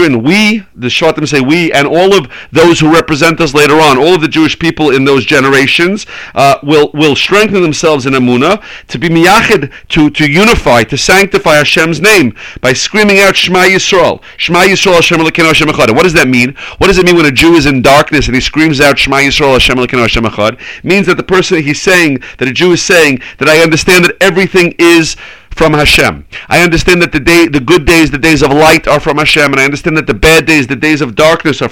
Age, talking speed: 40-59, 230 wpm